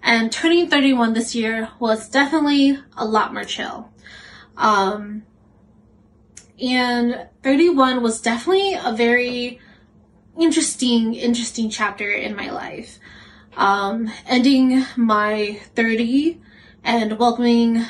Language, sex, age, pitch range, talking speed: English, female, 20-39, 215-255 Hz, 100 wpm